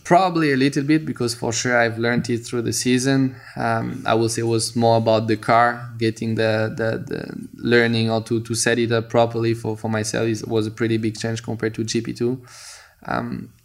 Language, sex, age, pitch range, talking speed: English, male, 20-39, 110-125 Hz, 210 wpm